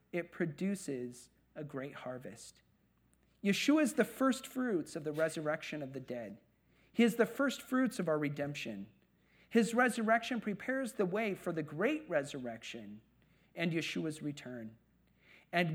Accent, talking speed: American, 140 wpm